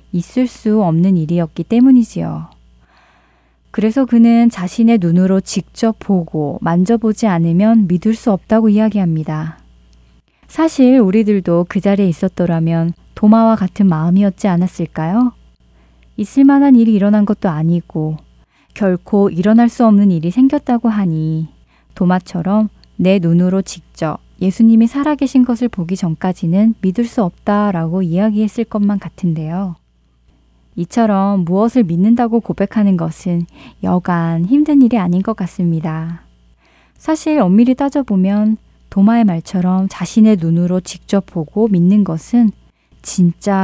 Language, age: Korean, 20-39